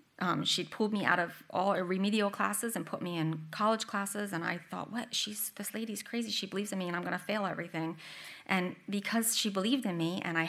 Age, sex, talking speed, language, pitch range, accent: 30-49, female, 230 wpm, English, 165-205 Hz, American